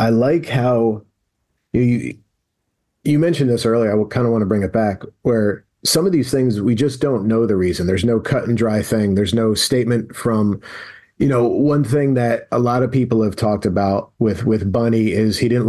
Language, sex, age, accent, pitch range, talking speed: English, male, 40-59, American, 115-140 Hz, 215 wpm